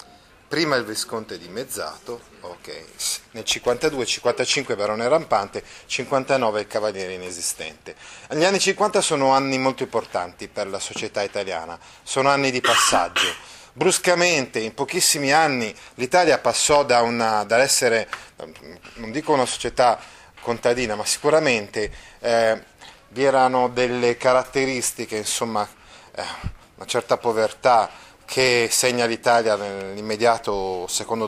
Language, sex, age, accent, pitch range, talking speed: Italian, male, 30-49, native, 110-140 Hz, 115 wpm